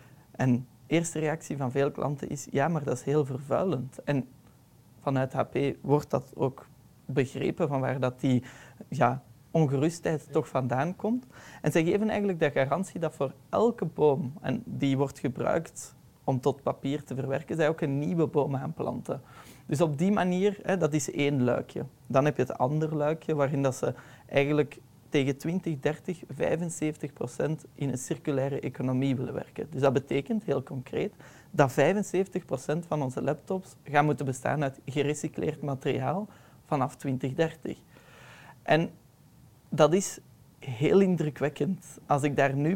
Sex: male